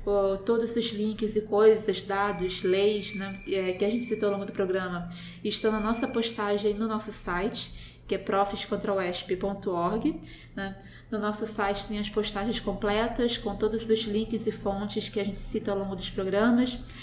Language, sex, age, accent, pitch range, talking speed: Portuguese, female, 20-39, Brazilian, 195-220 Hz, 165 wpm